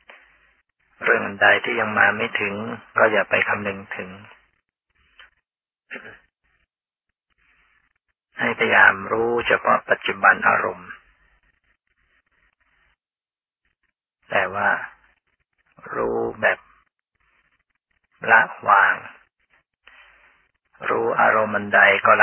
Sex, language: male, Thai